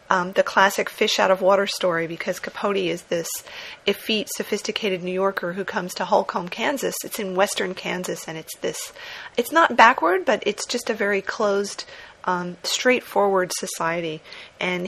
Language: English